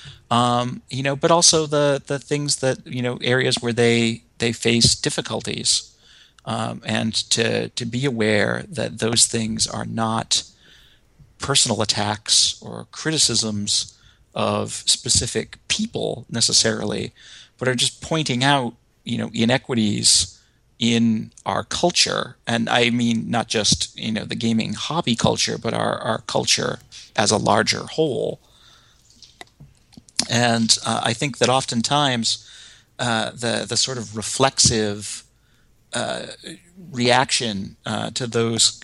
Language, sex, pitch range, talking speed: English, male, 110-125 Hz, 130 wpm